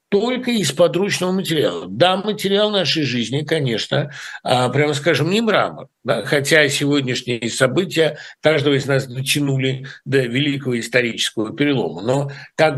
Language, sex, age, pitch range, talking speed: Russian, male, 60-79, 130-195 Hz, 120 wpm